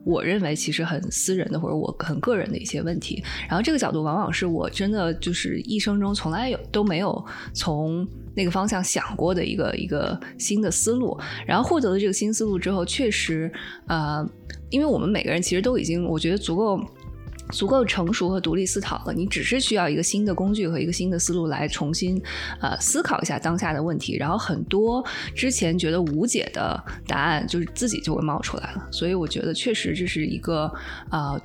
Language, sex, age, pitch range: Chinese, female, 20-39, 165-215 Hz